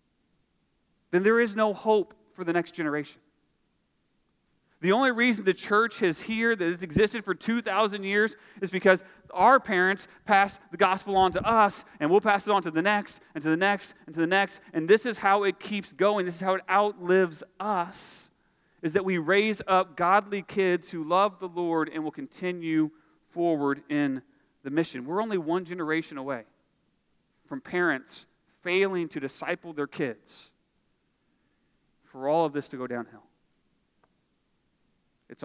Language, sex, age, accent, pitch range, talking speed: English, male, 40-59, American, 160-205 Hz, 170 wpm